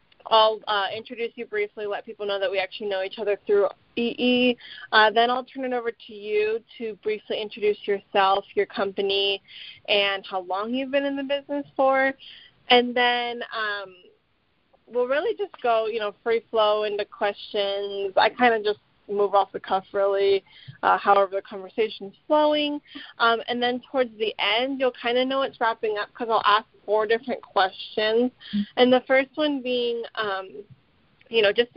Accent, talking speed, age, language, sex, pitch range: American, 180 wpm, 20-39, English, female, 200-250 Hz